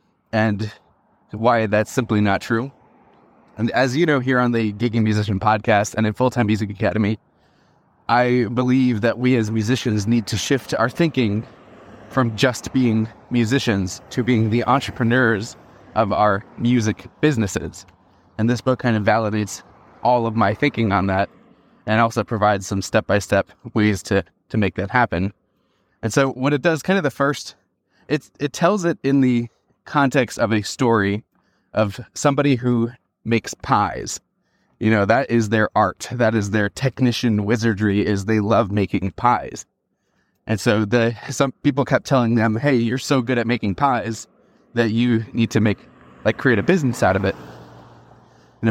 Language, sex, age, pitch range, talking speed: English, male, 20-39, 105-125 Hz, 165 wpm